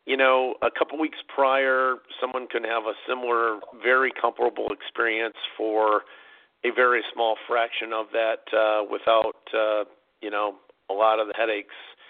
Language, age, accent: English, 50-69, American